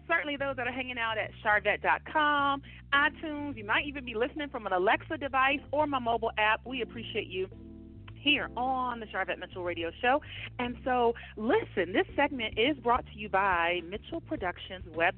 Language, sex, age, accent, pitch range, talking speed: English, female, 40-59, American, 210-280 Hz, 180 wpm